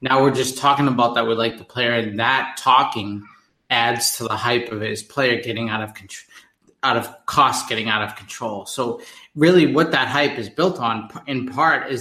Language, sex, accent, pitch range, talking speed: English, male, American, 115-130 Hz, 210 wpm